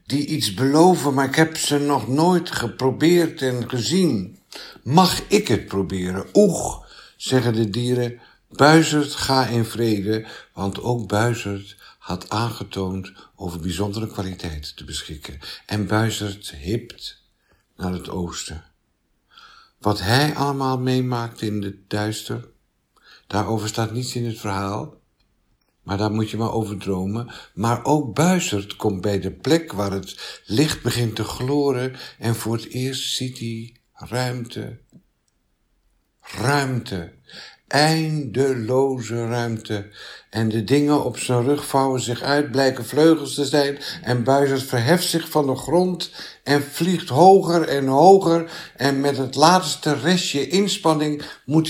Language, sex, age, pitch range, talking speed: Dutch, male, 60-79, 105-145 Hz, 135 wpm